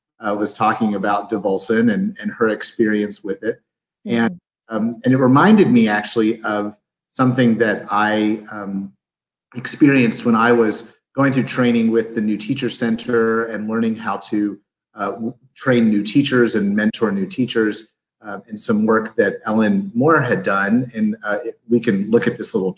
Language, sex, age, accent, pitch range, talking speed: English, male, 30-49, American, 110-135 Hz, 170 wpm